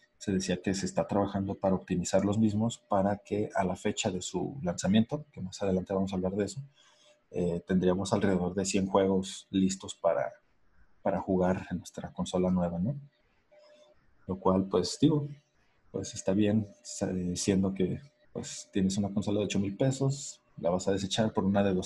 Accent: Mexican